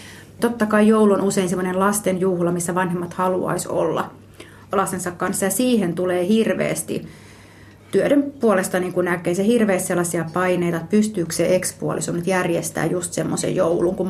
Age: 30-49